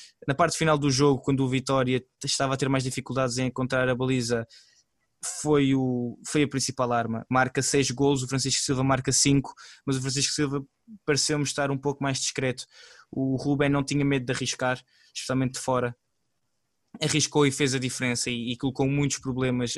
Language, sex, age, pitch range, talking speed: Portuguese, male, 20-39, 125-140 Hz, 185 wpm